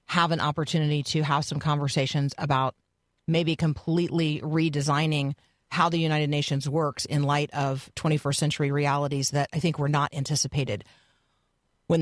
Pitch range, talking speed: 145-175 Hz, 145 wpm